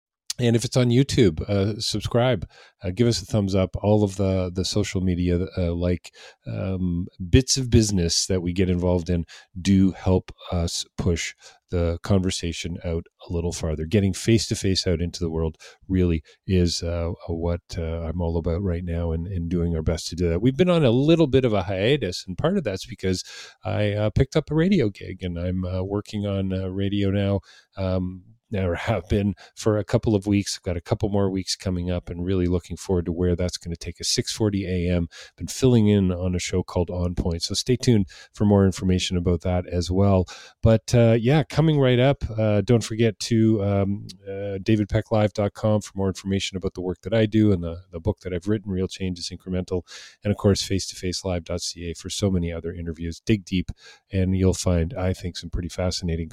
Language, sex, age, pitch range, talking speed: English, male, 40-59, 90-105 Hz, 210 wpm